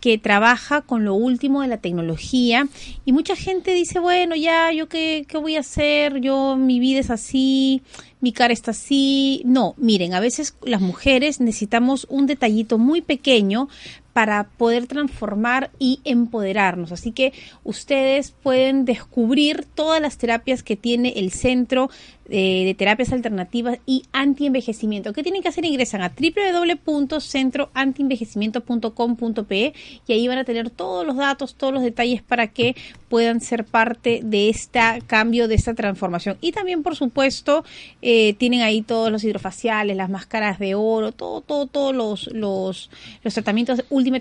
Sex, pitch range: female, 220-275 Hz